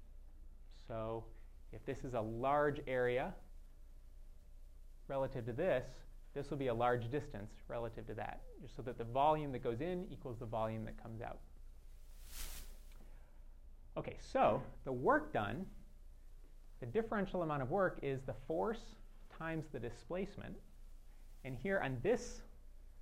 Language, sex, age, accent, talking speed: English, male, 30-49, American, 135 wpm